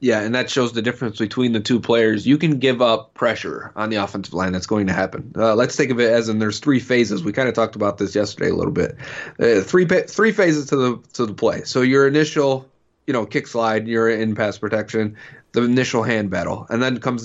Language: English